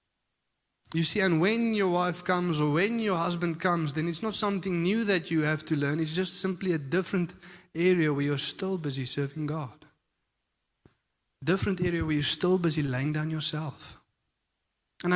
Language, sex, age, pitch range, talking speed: English, male, 20-39, 150-180 Hz, 175 wpm